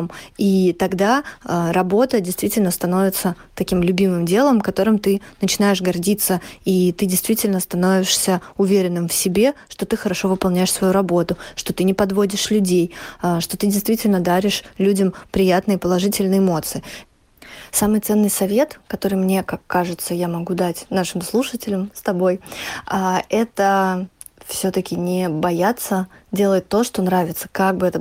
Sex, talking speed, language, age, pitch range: female, 135 wpm, Russian, 20-39, 180-205 Hz